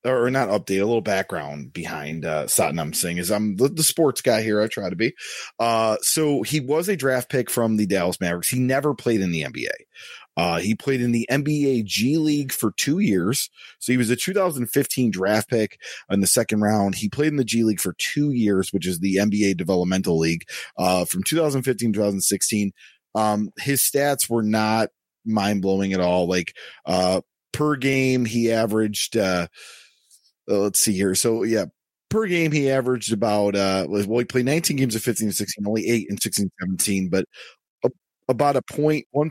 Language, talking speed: English, 190 wpm